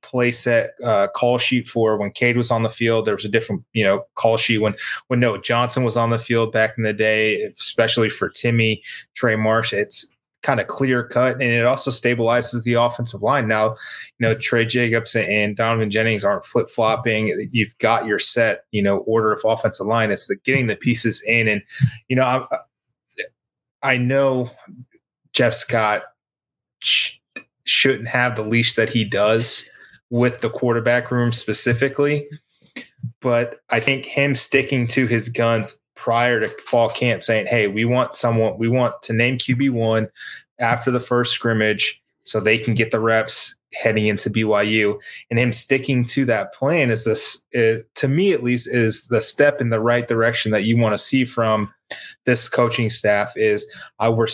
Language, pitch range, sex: English, 110-125 Hz, male